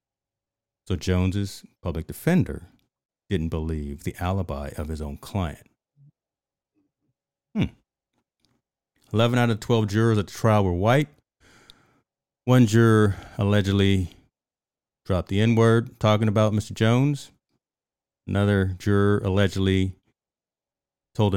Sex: male